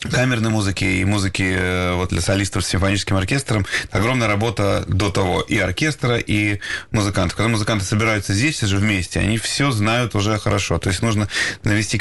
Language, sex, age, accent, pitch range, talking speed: Russian, male, 30-49, native, 100-115 Hz, 165 wpm